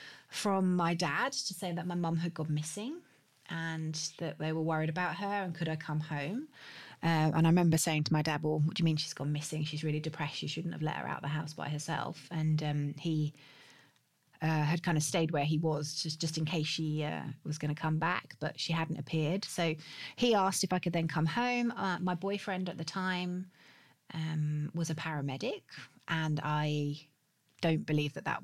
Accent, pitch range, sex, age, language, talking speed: British, 155-180 Hz, female, 30-49, English, 220 wpm